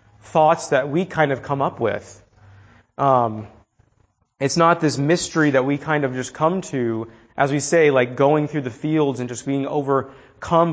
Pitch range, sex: 125-160 Hz, male